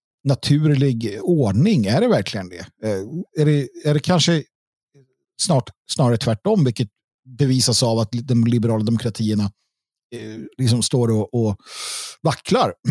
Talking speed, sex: 115 wpm, male